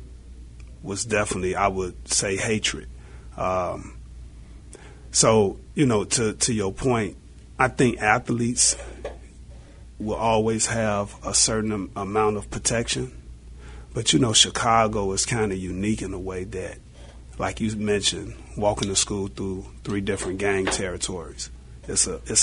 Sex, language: male, English